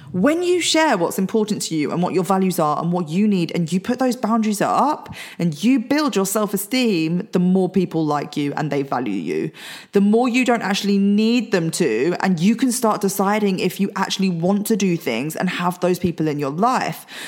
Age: 20-39